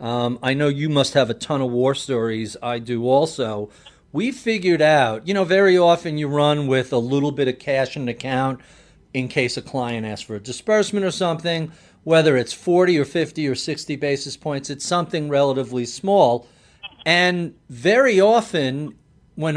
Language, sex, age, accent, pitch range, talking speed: English, male, 40-59, American, 130-175 Hz, 180 wpm